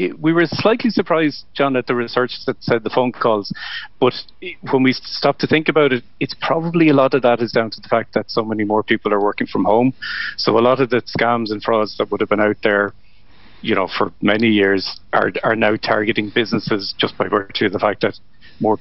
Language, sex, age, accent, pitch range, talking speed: English, male, 40-59, Irish, 105-130 Hz, 235 wpm